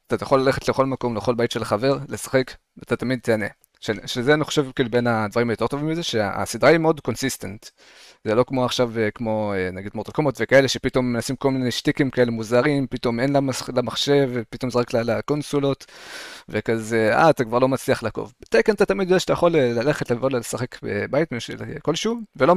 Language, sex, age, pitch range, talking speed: Hebrew, male, 20-39, 110-140 Hz, 185 wpm